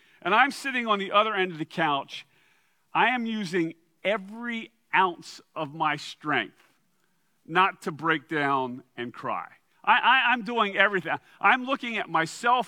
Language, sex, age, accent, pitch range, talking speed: English, male, 40-59, American, 170-235 Hz, 150 wpm